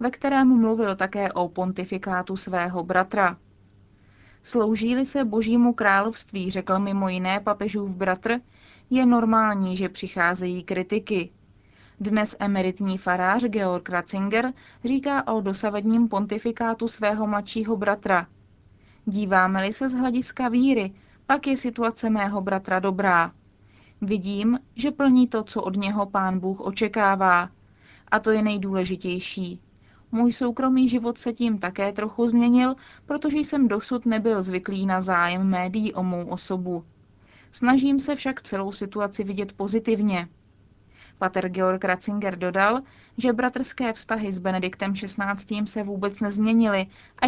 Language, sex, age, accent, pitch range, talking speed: Czech, female, 20-39, native, 185-230 Hz, 125 wpm